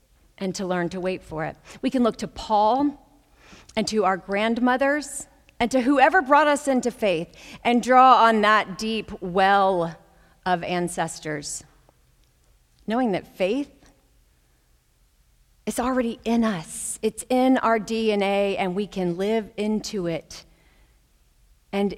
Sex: female